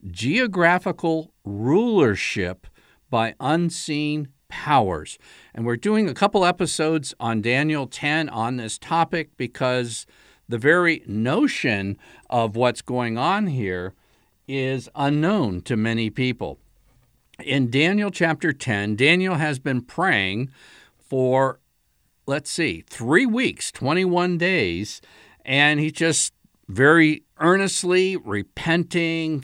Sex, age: male, 50-69